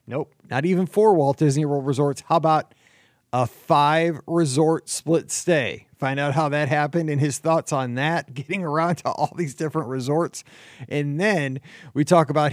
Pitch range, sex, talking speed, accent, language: 140-170 Hz, male, 175 wpm, American, English